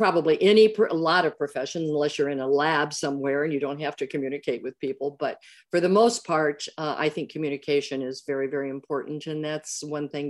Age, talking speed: 50-69, 215 wpm